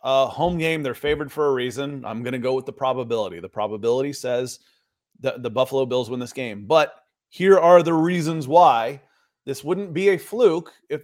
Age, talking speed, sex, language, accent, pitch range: 30-49, 195 wpm, male, English, American, 120-160 Hz